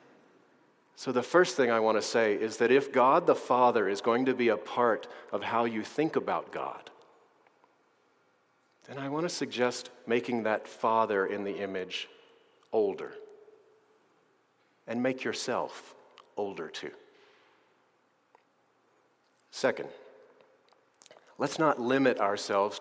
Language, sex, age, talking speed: English, male, 40-59, 125 wpm